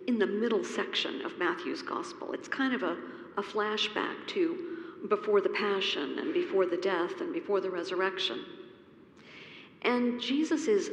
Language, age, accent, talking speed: English, 50-69, American, 155 wpm